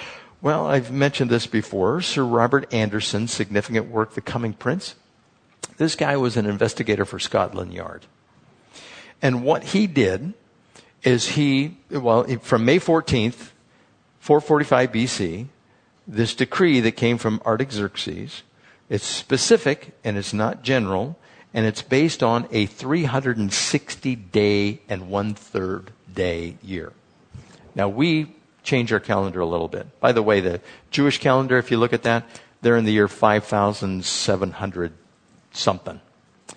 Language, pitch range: English, 100-130 Hz